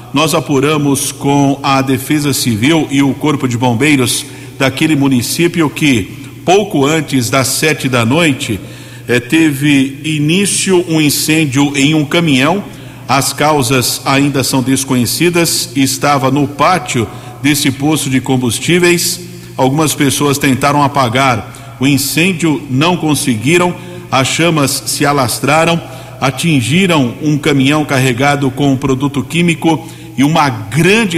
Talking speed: 120 wpm